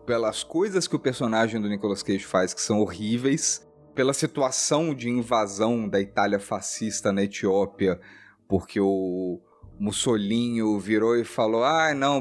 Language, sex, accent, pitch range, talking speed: Portuguese, male, Brazilian, 100-130 Hz, 145 wpm